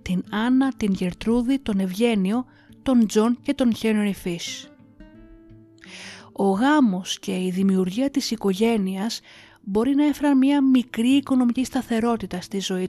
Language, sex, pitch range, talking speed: Greek, female, 185-240 Hz, 130 wpm